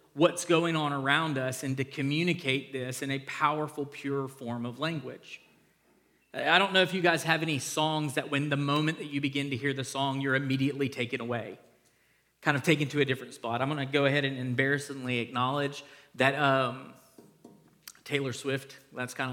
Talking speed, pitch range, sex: 185 wpm, 140-170 Hz, male